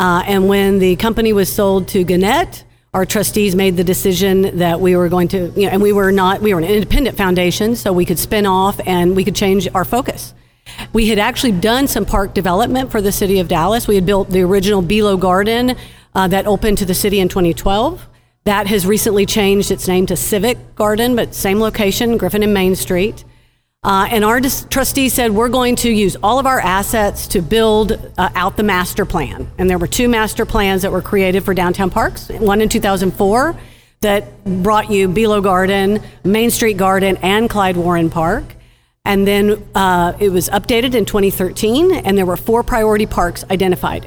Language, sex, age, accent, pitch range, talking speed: English, female, 50-69, American, 185-215 Hz, 200 wpm